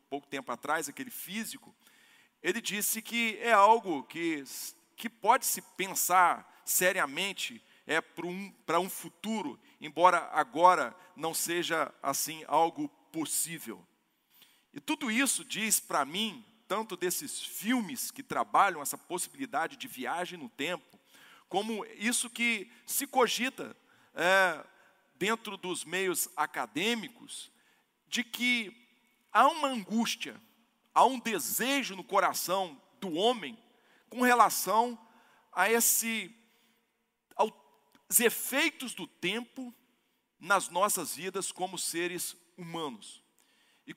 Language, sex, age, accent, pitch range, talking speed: Portuguese, male, 40-59, Brazilian, 185-245 Hz, 110 wpm